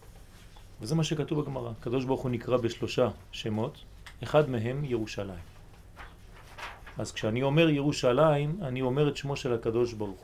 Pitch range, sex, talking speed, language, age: 95-155 Hz, male, 135 wpm, French, 40-59